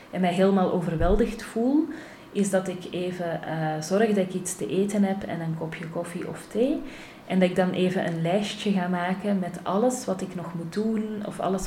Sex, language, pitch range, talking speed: female, Dutch, 170-205 Hz, 210 wpm